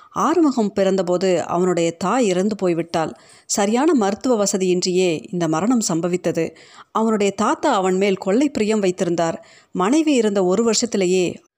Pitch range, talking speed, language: 180-240 Hz, 120 wpm, Tamil